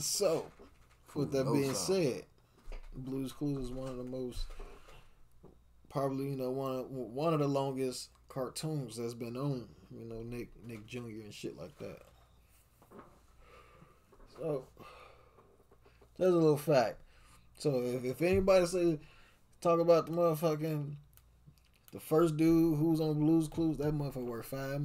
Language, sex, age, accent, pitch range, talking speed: English, male, 20-39, American, 100-145 Hz, 140 wpm